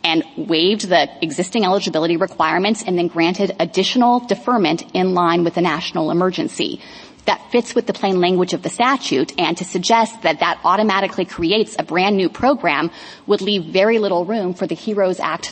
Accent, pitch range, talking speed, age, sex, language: American, 175-220 Hz, 175 wpm, 30-49, female, English